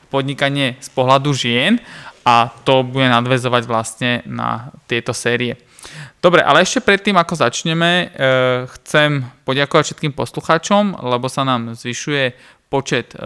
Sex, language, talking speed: male, Slovak, 120 wpm